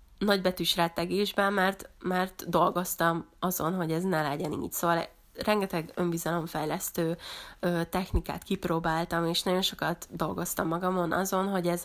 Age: 20-39